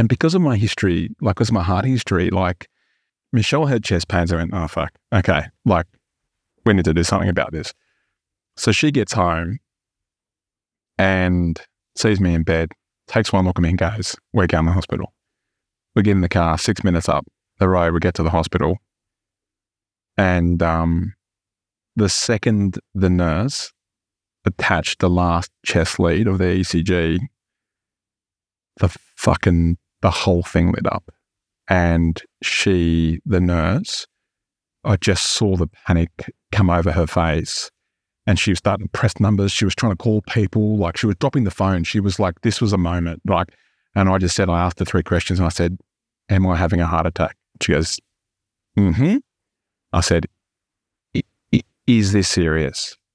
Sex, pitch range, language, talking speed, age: male, 85-105 Hz, English, 175 wpm, 30-49